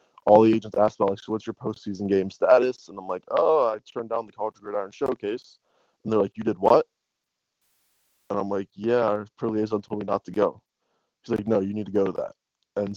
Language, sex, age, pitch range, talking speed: English, male, 20-39, 100-110 Hz, 235 wpm